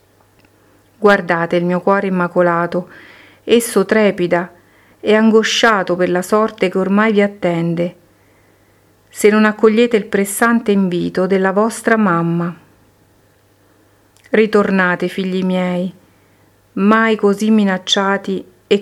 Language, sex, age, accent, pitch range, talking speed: Italian, female, 50-69, native, 165-215 Hz, 100 wpm